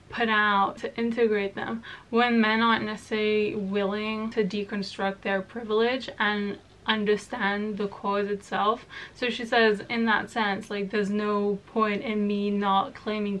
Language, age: English, 10-29